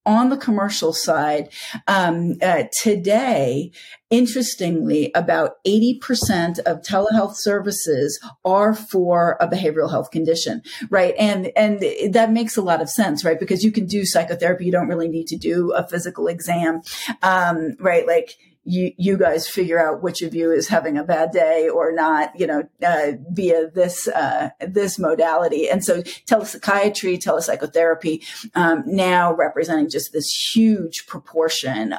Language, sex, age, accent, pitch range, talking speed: English, female, 40-59, American, 165-210 Hz, 150 wpm